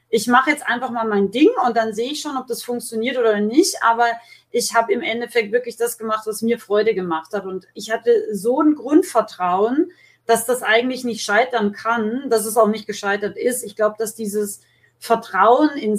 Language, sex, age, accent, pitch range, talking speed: German, female, 30-49, German, 220-260 Hz, 205 wpm